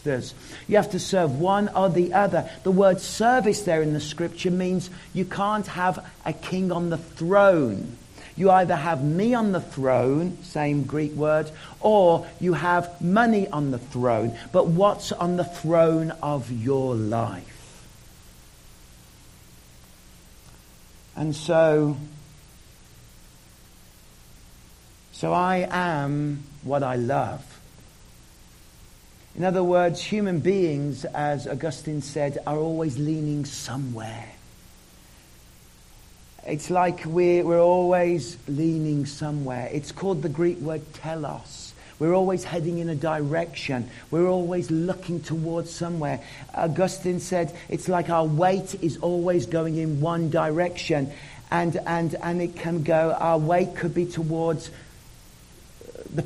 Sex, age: male, 50-69